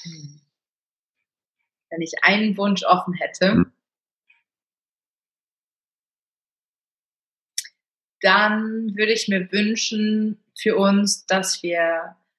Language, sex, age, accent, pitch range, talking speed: German, female, 30-49, German, 175-200 Hz, 75 wpm